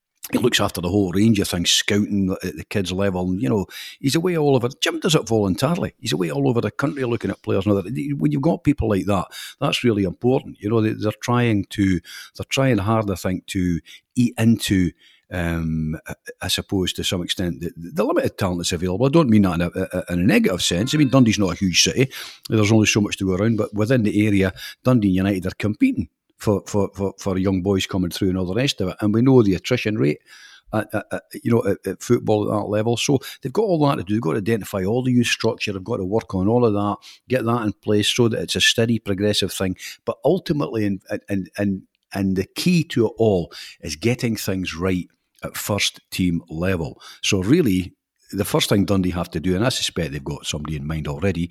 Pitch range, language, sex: 95-115 Hz, English, male